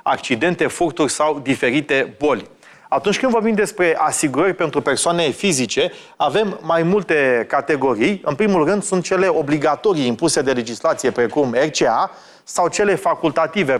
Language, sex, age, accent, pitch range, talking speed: Romanian, male, 30-49, native, 140-180 Hz, 135 wpm